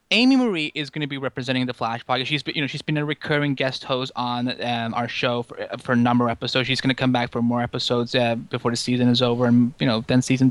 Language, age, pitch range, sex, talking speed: English, 20-39, 120-150 Hz, male, 280 wpm